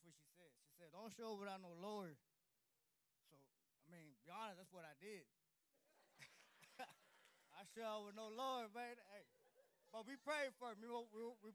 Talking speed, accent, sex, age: 170 wpm, American, male, 20-39